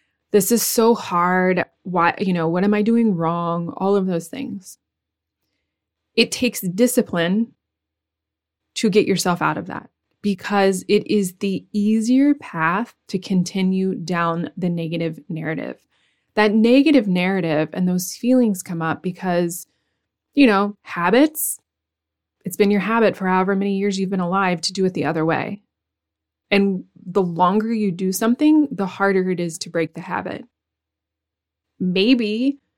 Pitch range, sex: 170-215 Hz, female